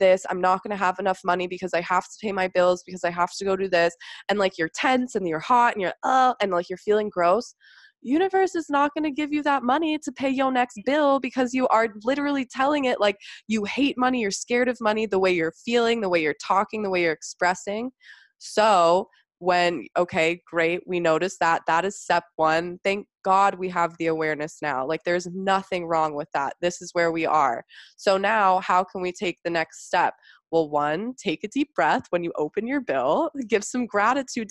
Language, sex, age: English, female, 20-39